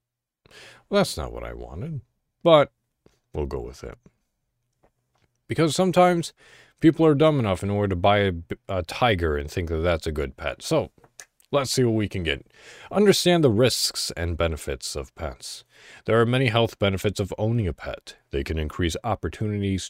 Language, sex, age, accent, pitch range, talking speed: English, male, 40-59, American, 85-115 Hz, 170 wpm